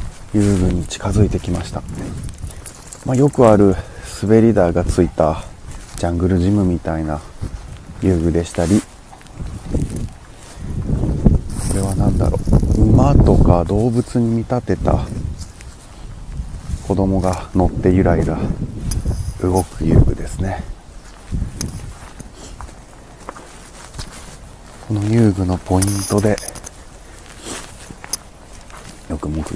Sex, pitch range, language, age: male, 85-105 Hz, Japanese, 40-59